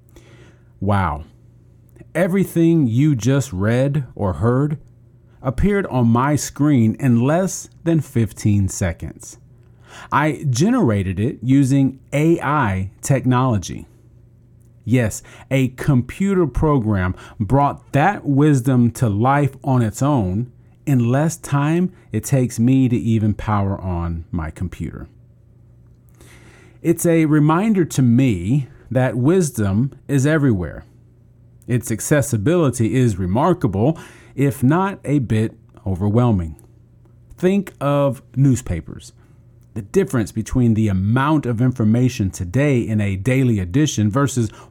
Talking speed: 105 wpm